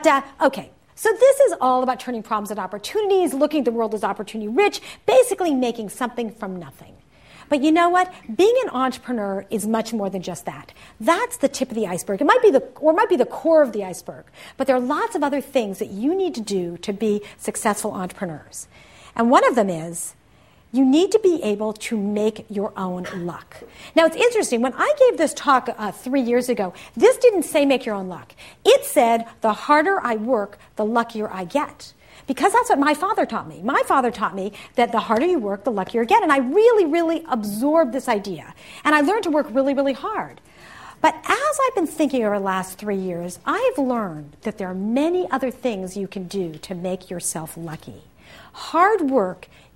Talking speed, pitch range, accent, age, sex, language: 205 wpm, 205-315 Hz, American, 50-69, female, English